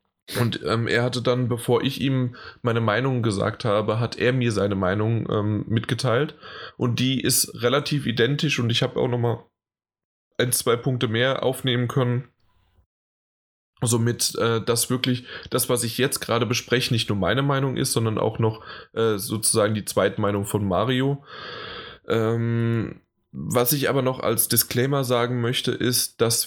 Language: German